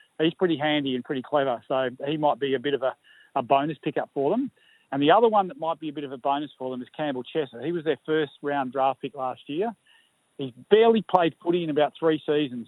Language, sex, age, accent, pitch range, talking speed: English, male, 40-59, Australian, 140-160 Hz, 250 wpm